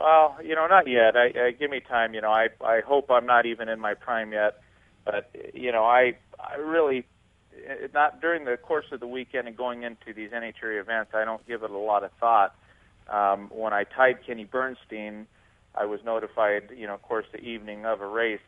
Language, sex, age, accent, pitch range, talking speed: English, male, 40-59, American, 105-125 Hz, 220 wpm